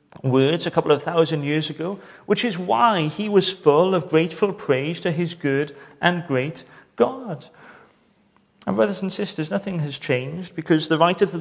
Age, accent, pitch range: 30-49, British, 160-210 Hz